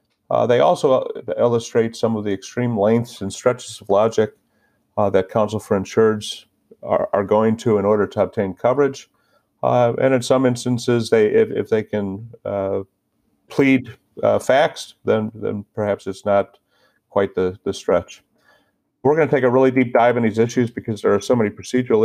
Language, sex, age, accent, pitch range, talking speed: English, male, 50-69, American, 100-120 Hz, 180 wpm